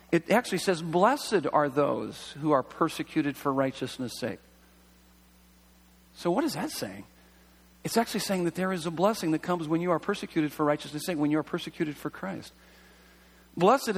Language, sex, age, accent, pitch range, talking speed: English, male, 40-59, American, 140-185 Hz, 175 wpm